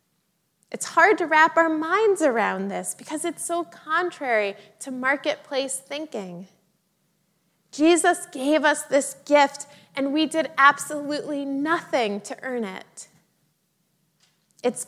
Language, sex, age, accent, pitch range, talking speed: English, female, 20-39, American, 195-275 Hz, 115 wpm